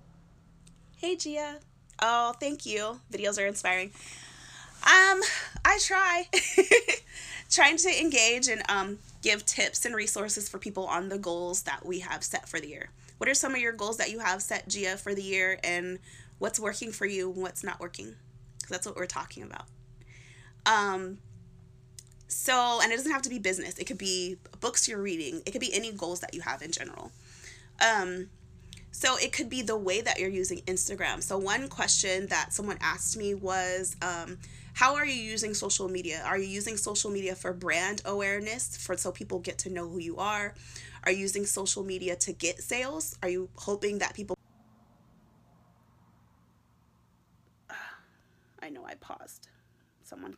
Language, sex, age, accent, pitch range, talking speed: English, female, 20-39, American, 170-220 Hz, 175 wpm